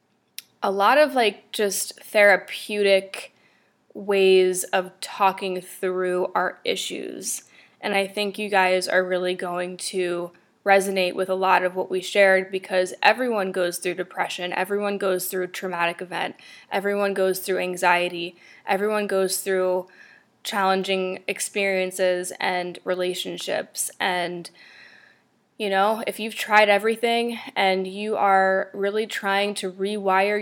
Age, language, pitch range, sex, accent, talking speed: 20-39, English, 185-205 Hz, female, American, 130 wpm